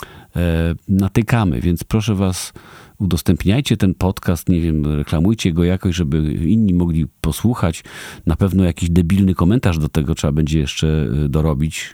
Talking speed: 135 wpm